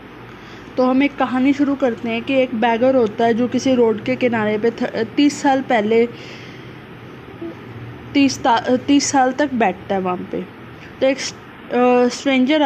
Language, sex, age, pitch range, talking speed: Hindi, female, 20-39, 240-280 Hz, 155 wpm